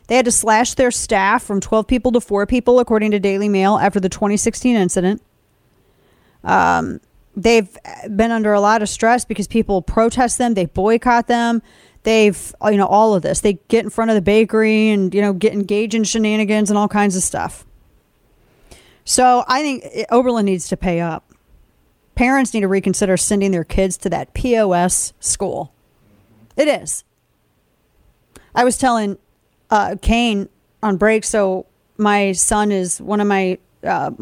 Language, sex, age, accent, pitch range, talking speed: English, female, 40-59, American, 185-220 Hz, 170 wpm